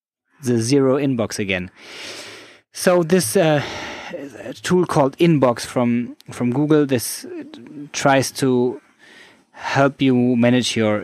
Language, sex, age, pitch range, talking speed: English, male, 20-39, 110-140 Hz, 110 wpm